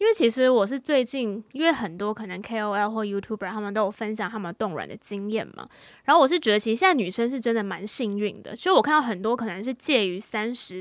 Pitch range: 210-255 Hz